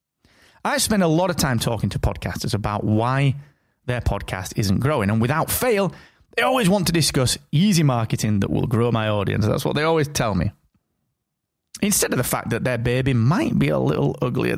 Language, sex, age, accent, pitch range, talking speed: English, male, 30-49, British, 110-160 Hz, 200 wpm